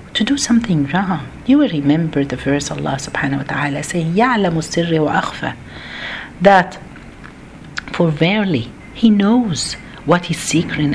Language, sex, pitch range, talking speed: Arabic, female, 155-215 Hz, 135 wpm